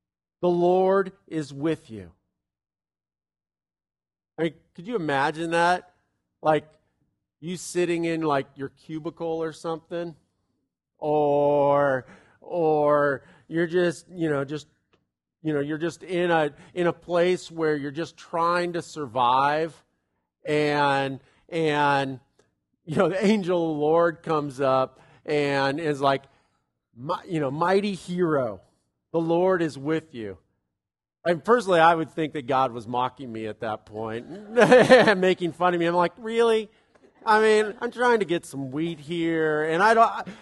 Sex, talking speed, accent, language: male, 145 wpm, American, English